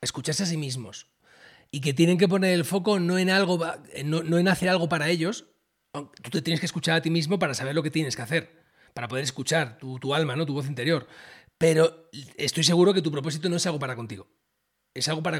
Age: 30-49